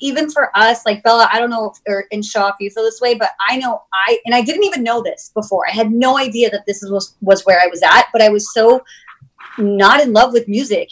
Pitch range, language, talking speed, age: 195-240 Hz, English, 280 wpm, 30-49